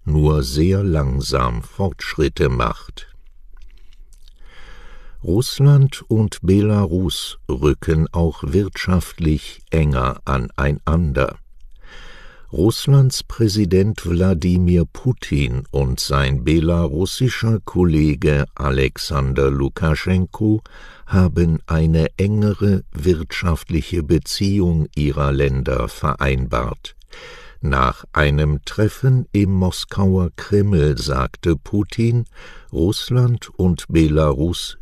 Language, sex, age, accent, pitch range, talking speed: English, male, 60-79, German, 70-95 Hz, 70 wpm